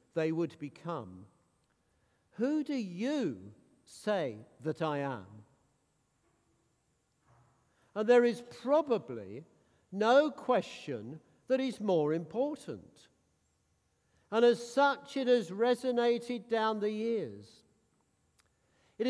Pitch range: 155-240 Hz